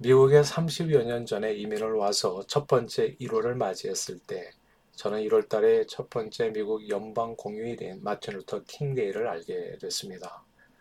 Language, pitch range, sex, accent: Korean, 110-155 Hz, male, native